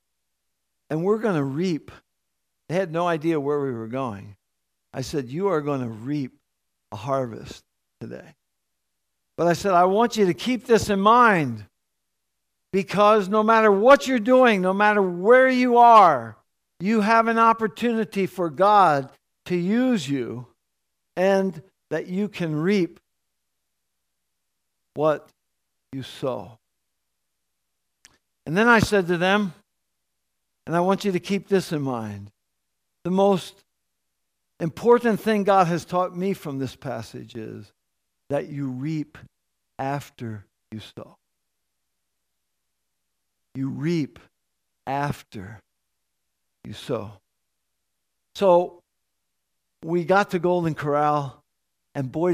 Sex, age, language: male, 60-79, English